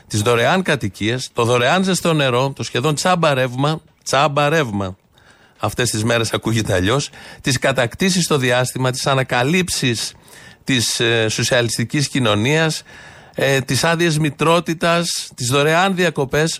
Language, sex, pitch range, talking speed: Greek, male, 120-150 Hz, 110 wpm